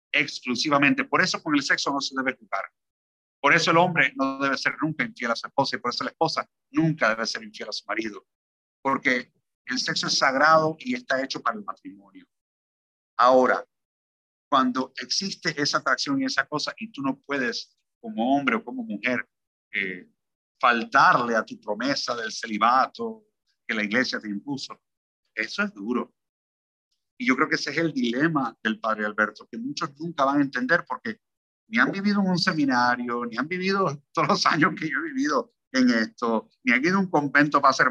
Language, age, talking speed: Spanish, 50-69, 190 wpm